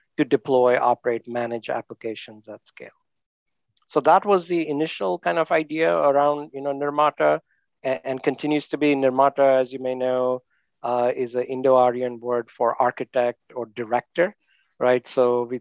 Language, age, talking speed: English, 50-69, 160 wpm